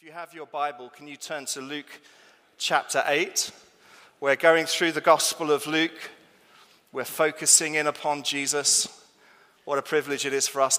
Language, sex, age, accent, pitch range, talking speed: English, male, 30-49, British, 120-150 Hz, 170 wpm